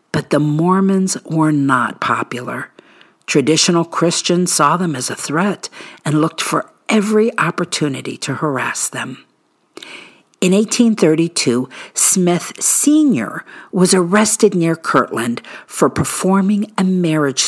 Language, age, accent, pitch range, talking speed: English, 50-69, American, 145-225 Hz, 115 wpm